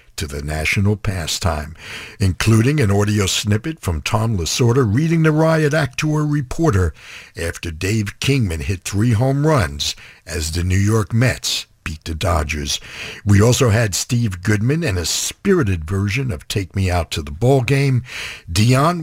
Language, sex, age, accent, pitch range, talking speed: English, male, 60-79, American, 85-120 Hz, 160 wpm